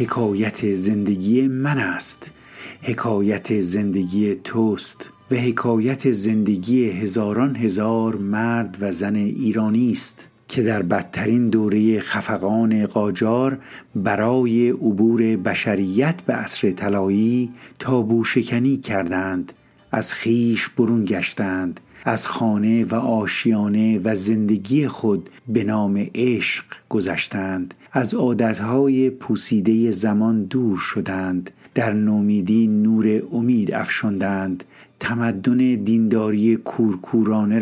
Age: 50-69